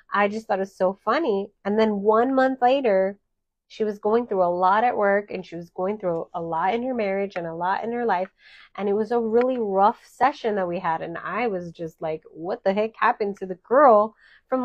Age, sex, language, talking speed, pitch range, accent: 30-49, female, English, 240 wpm, 190-250 Hz, American